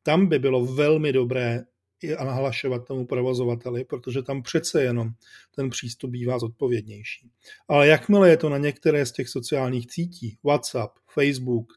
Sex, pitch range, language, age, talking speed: male, 120-155 Hz, Czech, 40-59, 145 wpm